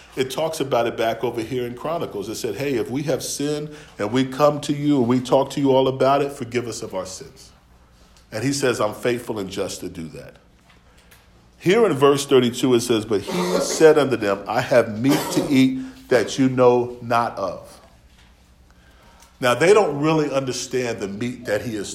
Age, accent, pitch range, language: 40-59, American, 120-155 Hz, English